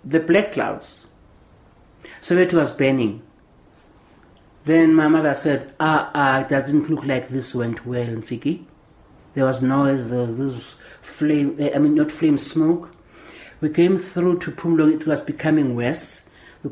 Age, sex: 60-79, male